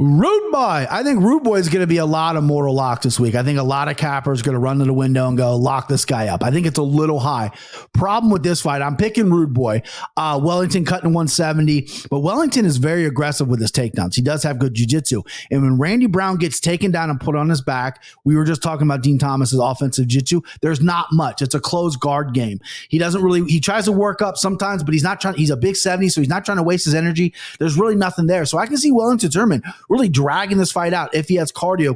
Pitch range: 140-180 Hz